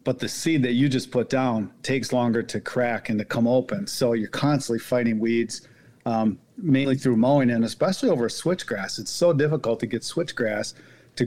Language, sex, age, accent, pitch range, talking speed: English, male, 40-59, American, 115-135 Hz, 190 wpm